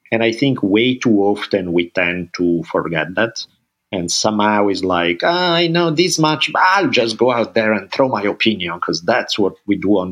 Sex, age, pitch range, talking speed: male, 50-69, 95-125 Hz, 210 wpm